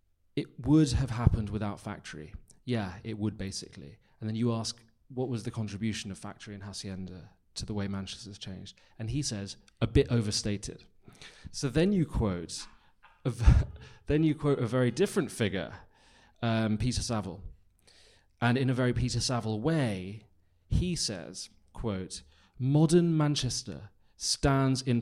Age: 30-49